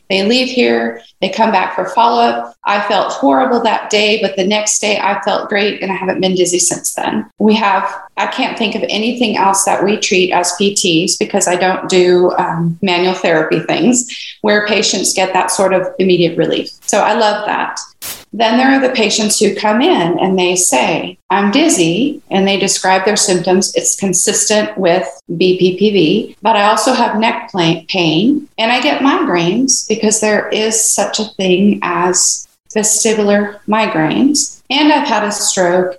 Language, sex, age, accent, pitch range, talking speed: English, female, 40-59, American, 185-225 Hz, 180 wpm